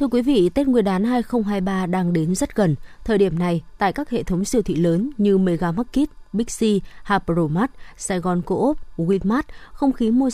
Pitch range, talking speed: 175-225 Hz, 185 wpm